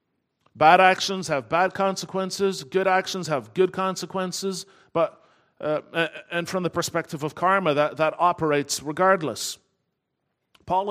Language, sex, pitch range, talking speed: English, male, 110-175 Hz, 125 wpm